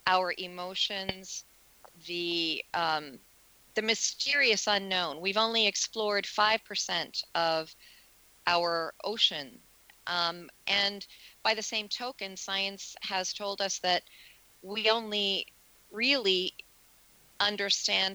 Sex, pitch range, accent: female, 180-215 Hz, American